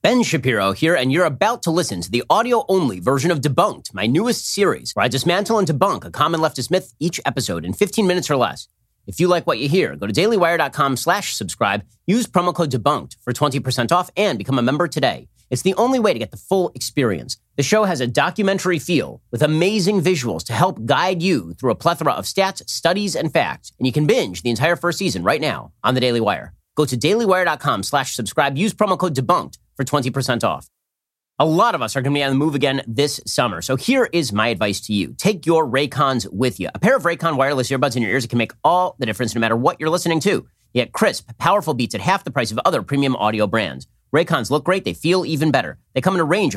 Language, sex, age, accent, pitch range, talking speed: English, male, 30-49, American, 125-175 Hz, 235 wpm